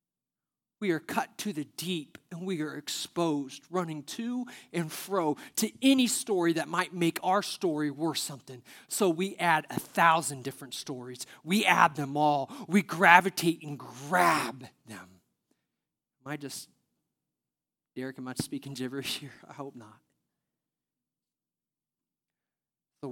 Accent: American